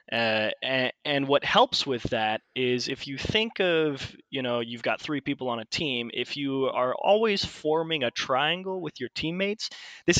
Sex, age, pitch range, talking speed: male, 20-39, 120-160 Hz, 190 wpm